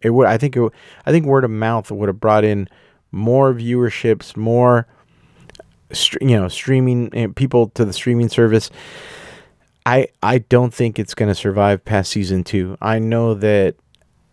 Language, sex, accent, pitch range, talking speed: English, male, American, 100-125 Hz, 170 wpm